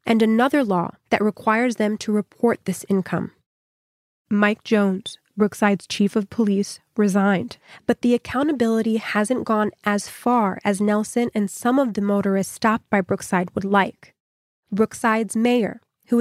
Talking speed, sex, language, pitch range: 145 wpm, female, English, 200-230 Hz